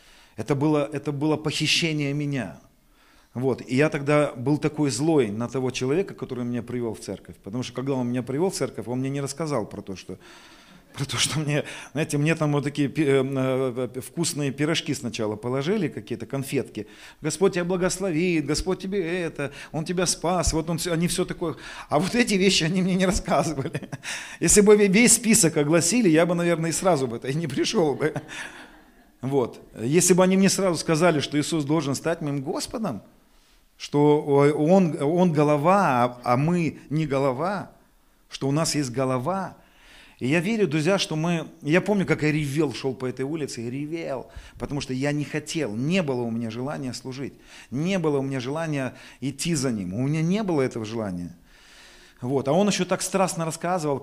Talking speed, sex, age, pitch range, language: 180 wpm, male, 40-59, 130-170 Hz, Russian